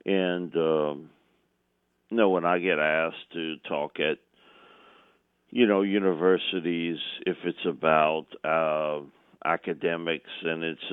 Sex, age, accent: male, 50-69, American